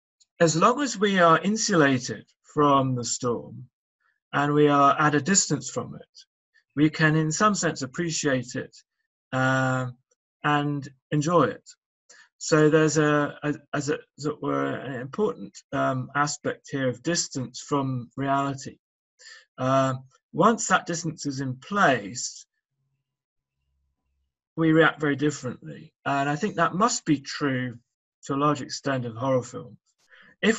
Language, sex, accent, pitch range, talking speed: English, male, British, 130-165 Hz, 140 wpm